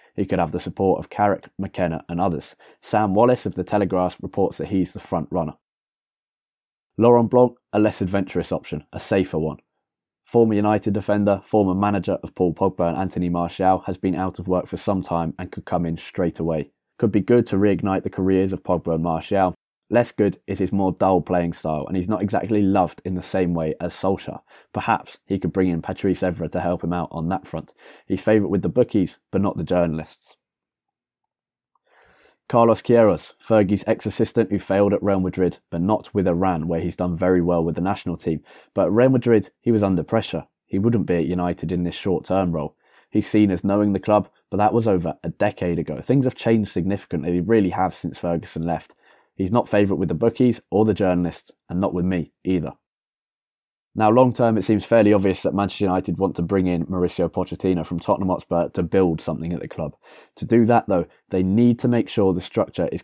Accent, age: British, 20-39